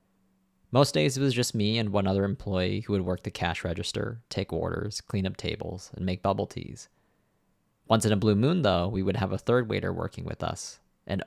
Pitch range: 95-120 Hz